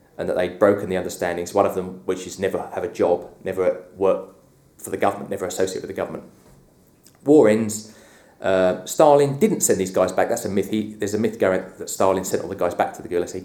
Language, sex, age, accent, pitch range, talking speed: English, male, 30-49, British, 90-105 Hz, 245 wpm